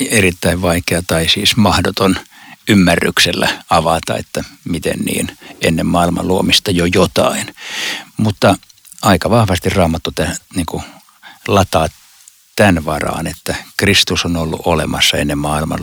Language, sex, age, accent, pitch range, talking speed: Finnish, male, 60-79, native, 85-105 Hz, 110 wpm